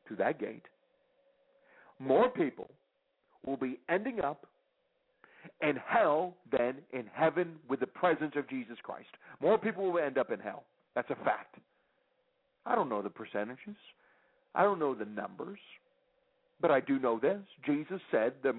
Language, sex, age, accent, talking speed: English, male, 60-79, American, 155 wpm